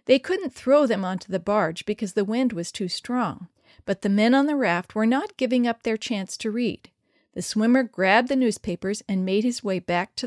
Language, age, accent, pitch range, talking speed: English, 40-59, American, 190-255 Hz, 220 wpm